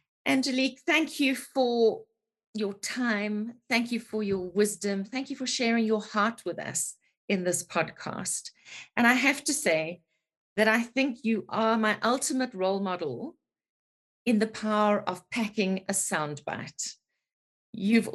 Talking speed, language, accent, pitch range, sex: 145 wpm, English, British, 175-230 Hz, female